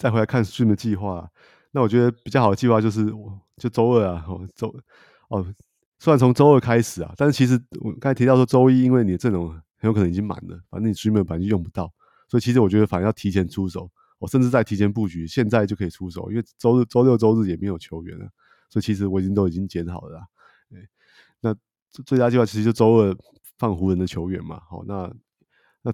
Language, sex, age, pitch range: Chinese, male, 30-49, 90-115 Hz